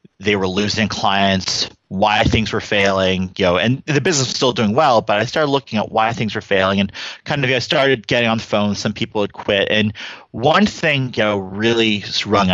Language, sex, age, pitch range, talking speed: English, male, 30-49, 100-120 Hz, 230 wpm